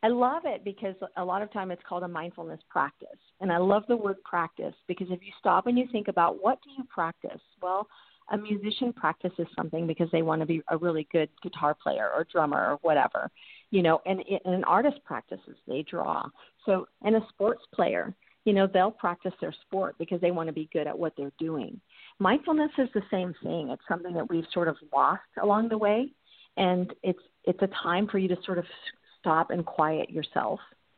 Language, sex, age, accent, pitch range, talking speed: English, female, 50-69, American, 170-210 Hz, 210 wpm